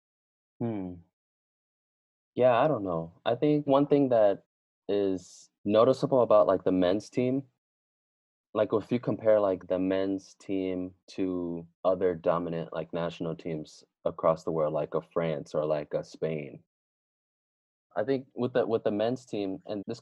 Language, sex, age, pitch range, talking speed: English, male, 20-39, 80-95 Hz, 155 wpm